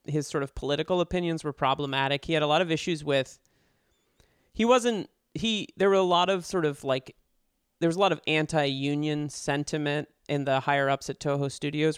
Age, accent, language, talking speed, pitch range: 30-49, American, English, 195 wpm, 140-170 Hz